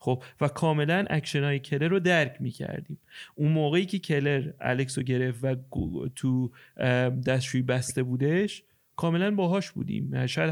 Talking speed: 150 wpm